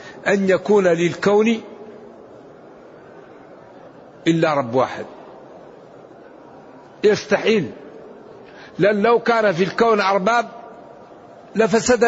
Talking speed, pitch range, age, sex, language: 70 wpm, 175-210 Hz, 60-79, male, Arabic